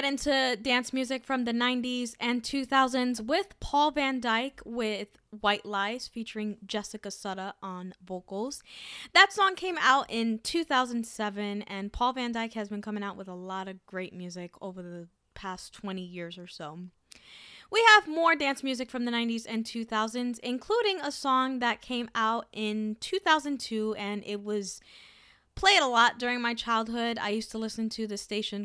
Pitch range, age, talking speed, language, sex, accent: 200-250 Hz, 10-29, 170 wpm, English, female, American